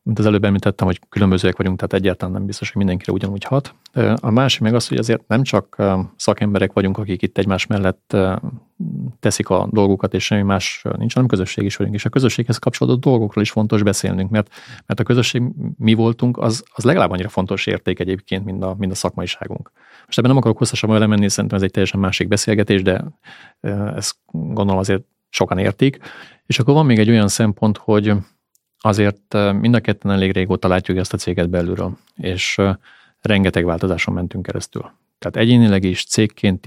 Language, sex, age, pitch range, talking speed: Hungarian, male, 30-49, 95-110 Hz, 185 wpm